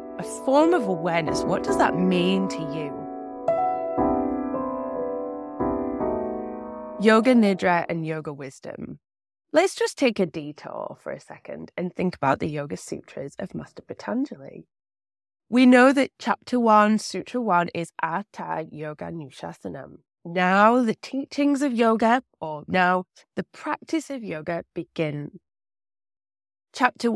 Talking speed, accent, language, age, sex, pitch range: 120 wpm, British, English, 20-39, female, 155-230 Hz